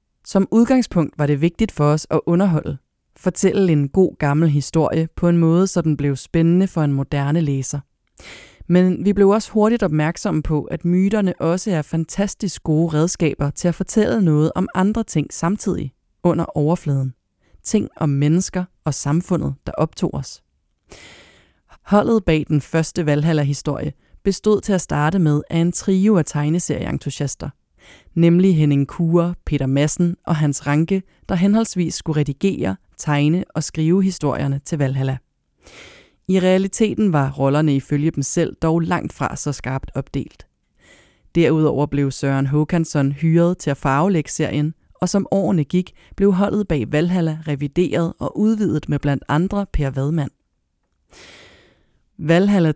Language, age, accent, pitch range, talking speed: English, 30-49, Danish, 145-180 Hz, 145 wpm